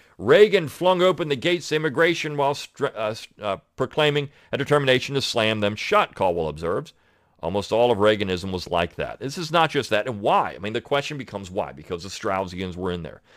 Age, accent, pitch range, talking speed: 40-59, American, 95-120 Hz, 200 wpm